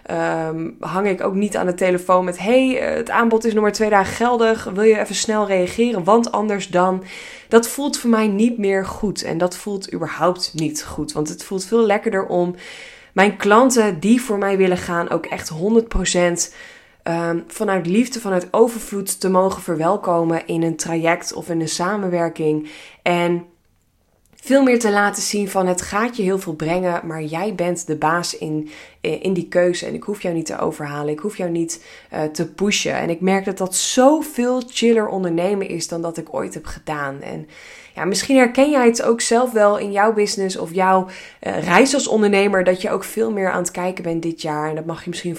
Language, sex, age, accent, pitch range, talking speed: Dutch, female, 20-39, Dutch, 170-215 Hz, 205 wpm